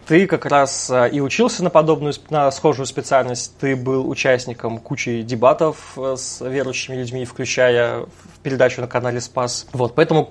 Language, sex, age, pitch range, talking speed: Russian, male, 20-39, 125-145 Hz, 155 wpm